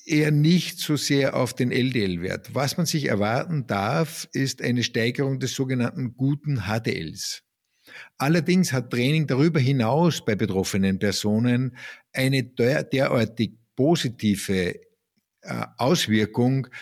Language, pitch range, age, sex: German, 110-135 Hz, 50-69, male